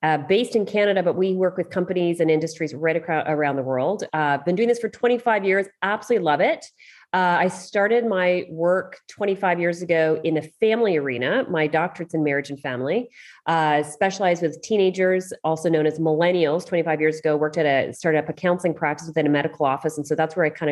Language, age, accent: English, 30-49, American